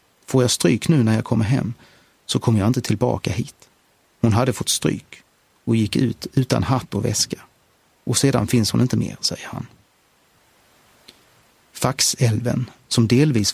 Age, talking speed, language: 30-49, 160 wpm, Swedish